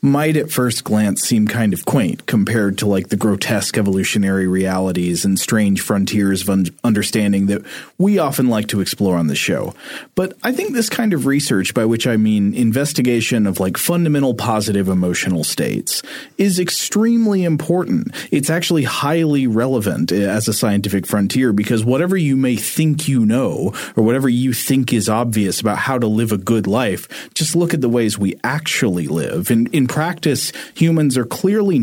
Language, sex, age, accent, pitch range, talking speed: English, male, 30-49, American, 100-135 Hz, 175 wpm